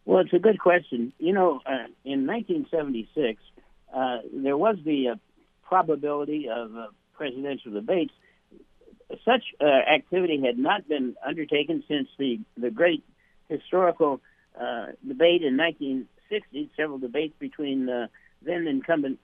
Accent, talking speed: American, 135 wpm